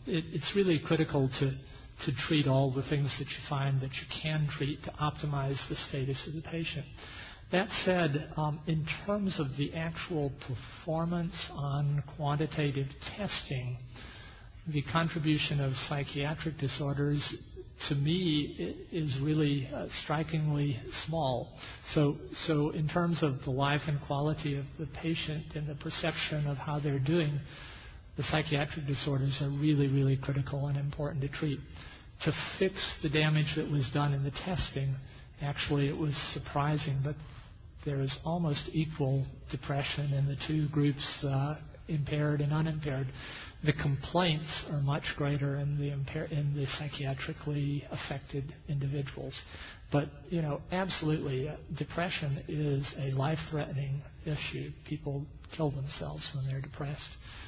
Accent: American